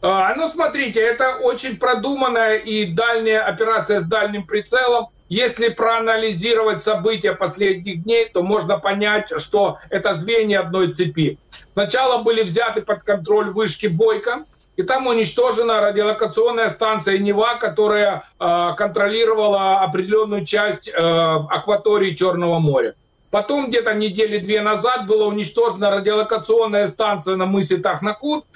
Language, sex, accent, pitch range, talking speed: Ukrainian, male, native, 195-235 Hz, 120 wpm